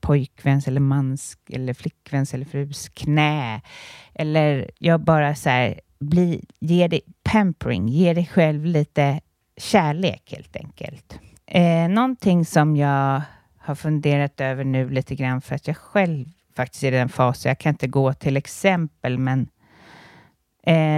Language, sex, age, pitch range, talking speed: Swedish, female, 30-49, 135-165 Hz, 145 wpm